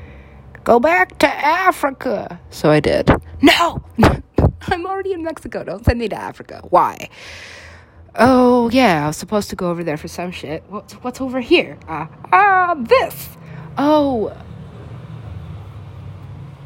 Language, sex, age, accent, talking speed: English, female, 30-49, American, 135 wpm